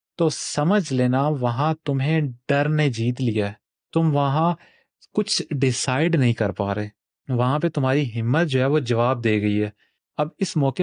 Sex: male